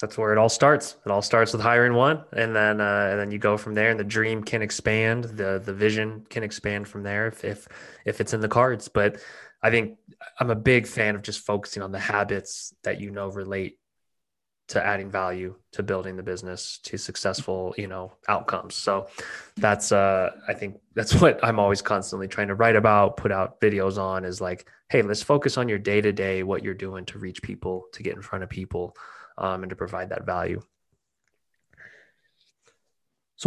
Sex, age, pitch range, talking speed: male, 20-39, 95-115 Hz, 205 wpm